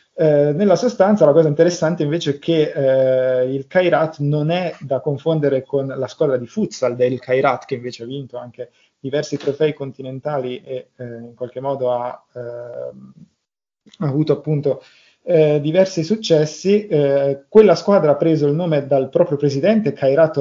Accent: native